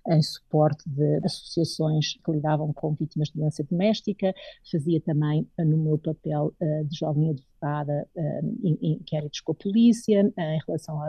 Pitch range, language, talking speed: 155-190 Hz, Portuguese, 135 wpm